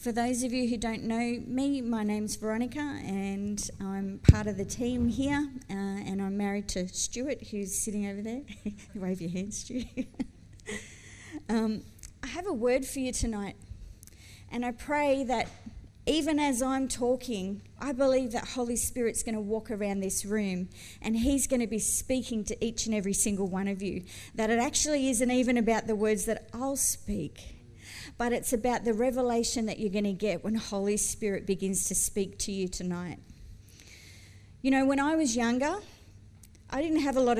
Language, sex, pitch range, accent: English, female, 200-265 Hz, Australian